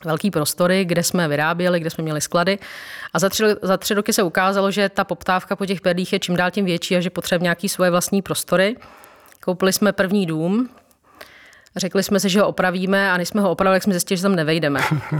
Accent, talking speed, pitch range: native, 210 wpm, 170-195 Hz